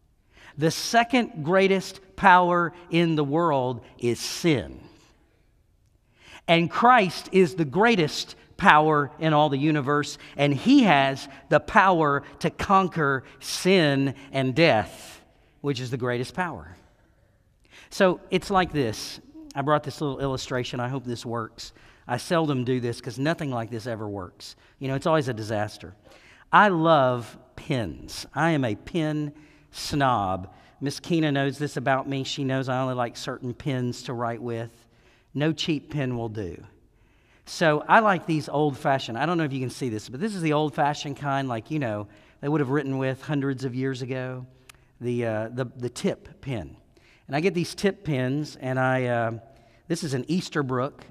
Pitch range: 125-155 Hz